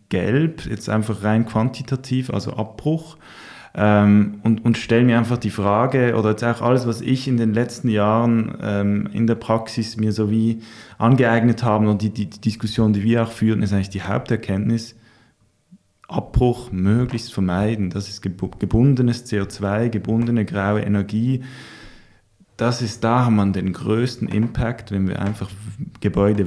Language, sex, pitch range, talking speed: German, male, 105-125 Hz, 155 wpm